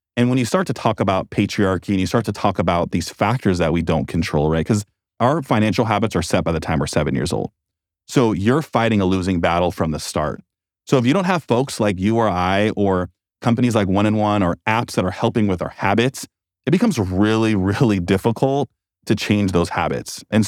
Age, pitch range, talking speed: 30-49, 95-115 Hz, 225 wpm